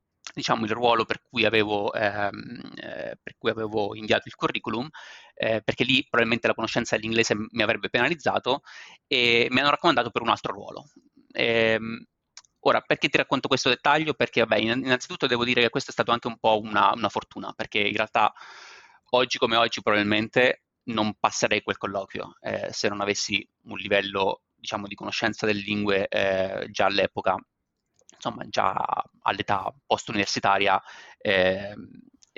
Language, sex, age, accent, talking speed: Italian, male, 30-49, native, 145 wpm